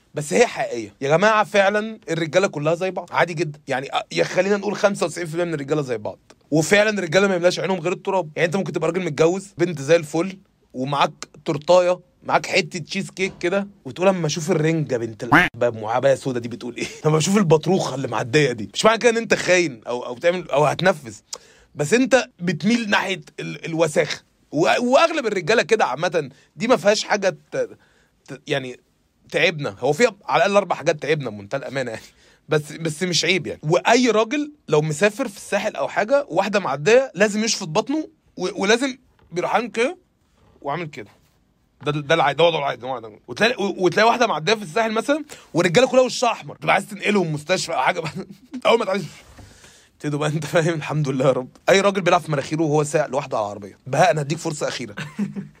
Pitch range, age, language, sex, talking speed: 150-205 Hz, 30-49, Arabic, male, 185 wpm